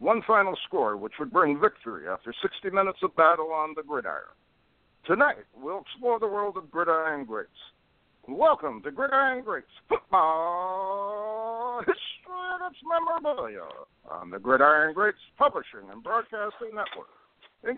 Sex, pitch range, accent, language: male, 160-245 Hz, American, English